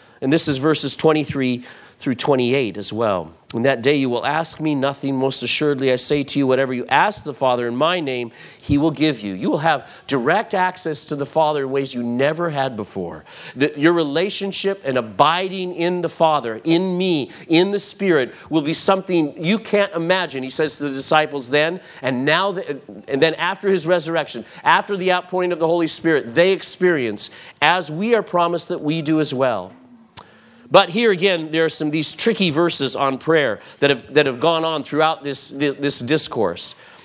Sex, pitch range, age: male, 140-175 Hz, 40-59